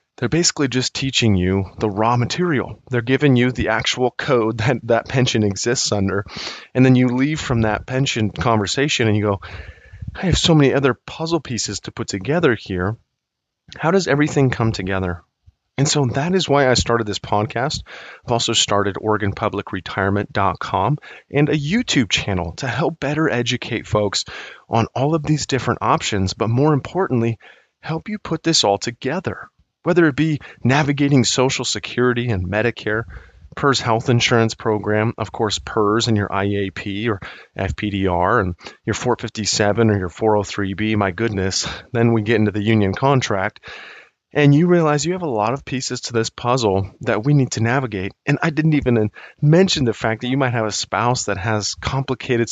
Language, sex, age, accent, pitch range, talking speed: English, male, 30-49, American, 105-140 Hz, 175 wpm